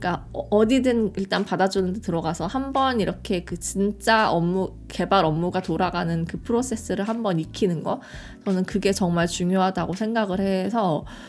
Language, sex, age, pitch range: Korean, female, 20-39, 165-210 Hz